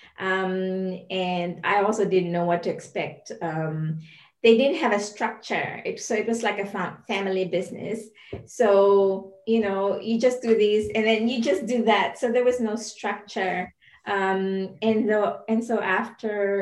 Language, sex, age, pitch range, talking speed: English, female, 20-39, 190-230 Hz, 175 wpm